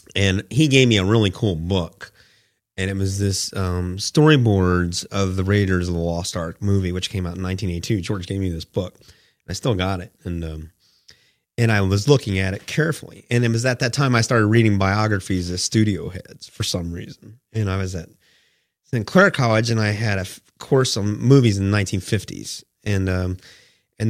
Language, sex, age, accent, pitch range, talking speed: English, male, 30-49, American, 95-120 Hz, 200 wpm